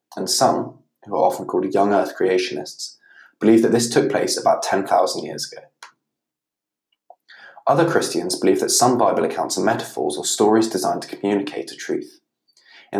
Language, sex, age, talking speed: English, male, 20-39, 160 wpm